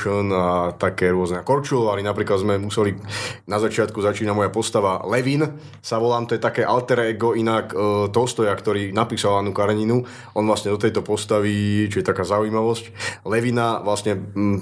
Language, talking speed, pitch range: Slovak, 160 wpm, 100-110 Hz